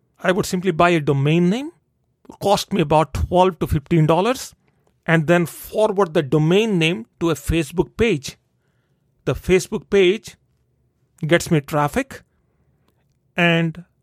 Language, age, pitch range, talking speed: English, 40-59, 155-215 Hz, 130 wpm